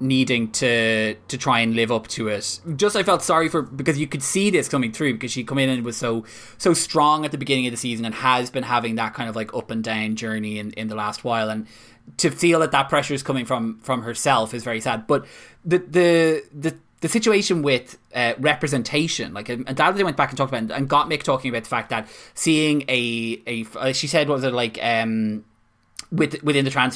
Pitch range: 110-140 Hz